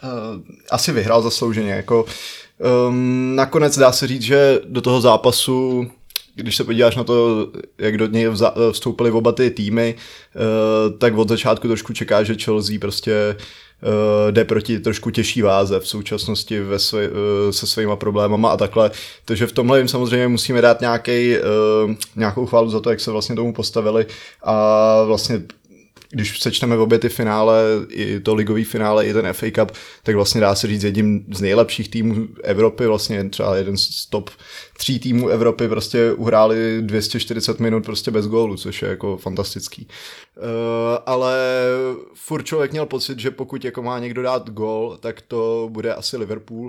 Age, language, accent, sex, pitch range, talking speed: 20-39, Czech, native, male, 110-120 Hz, 170 wpm